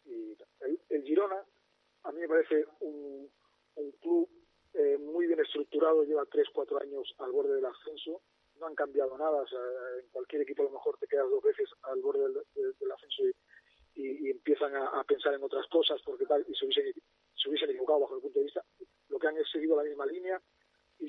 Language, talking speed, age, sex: Spanish, 215 wpm, 40-59, male